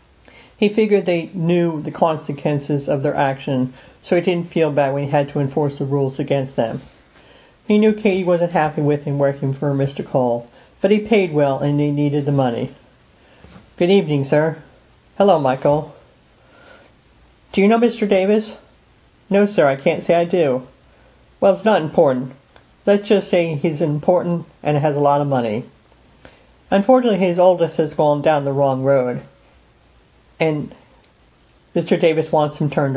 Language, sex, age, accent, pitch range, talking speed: English, male, 50-69, American, 140-185 Hz, 165 wpm